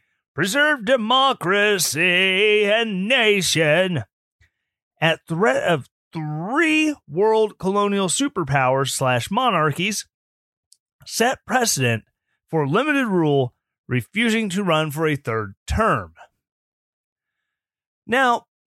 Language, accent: English, American